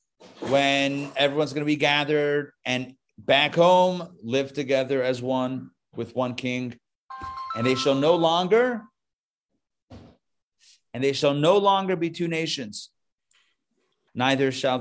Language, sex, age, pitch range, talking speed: English, male, 40-59, 120-155 Hz, 125 wpm